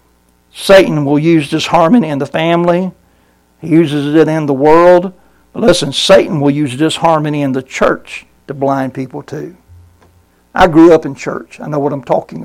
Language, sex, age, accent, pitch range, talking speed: English, male, 60-79, American, 145-185 Hz, 175 wpm